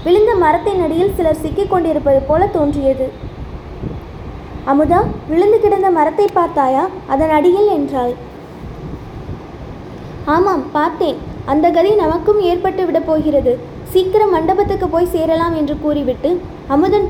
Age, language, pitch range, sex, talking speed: 20-39, Tamil, 300-370 Hz, female, 105 wpm